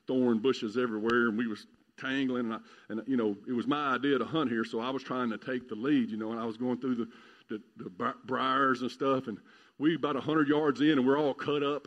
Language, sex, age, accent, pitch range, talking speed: English, male, 50-69, American, 130-200 Hz, 270 wpm